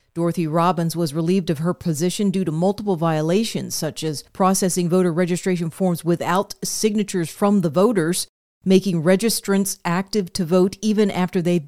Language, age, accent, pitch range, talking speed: English, 40-59, American, 170-200 Hz, 155 wpm